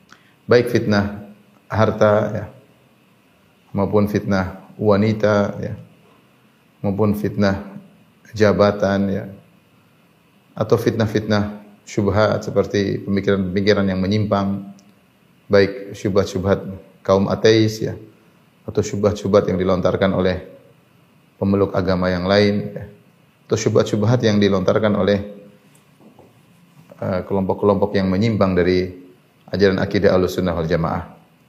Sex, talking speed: male, 90 wpm